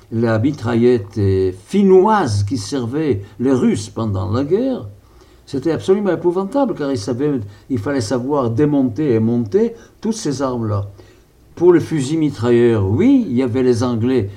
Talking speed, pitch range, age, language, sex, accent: 145 wpm, 105-135 Hz, 60-79, English, male, French